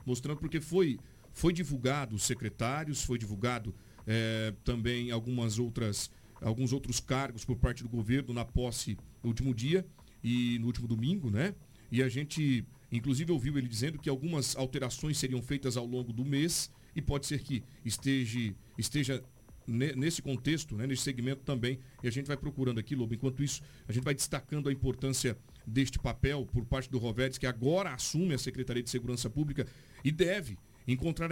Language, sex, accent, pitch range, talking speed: Portuguese, male, Brazilian, 125-150 Hz, 170 wpm